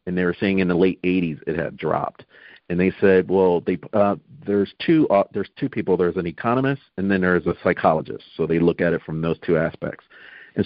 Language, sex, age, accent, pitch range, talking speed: English, male, 40-59, American, 95-110 Hz, 230 wpm